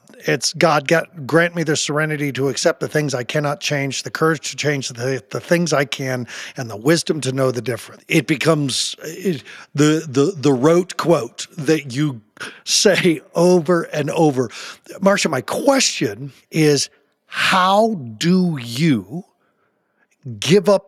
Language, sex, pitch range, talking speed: English, male, 140-180 Hz, 150 wpm